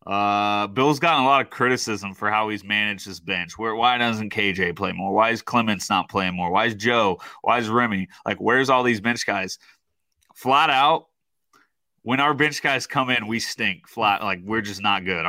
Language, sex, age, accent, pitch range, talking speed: English, male, 30-49, American, 95-115 Hz, 210 wpm